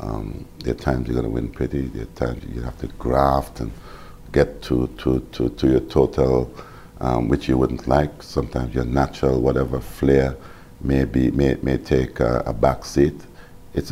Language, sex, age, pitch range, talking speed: English, male, 50-69, 65-75 Hz, 180 wpm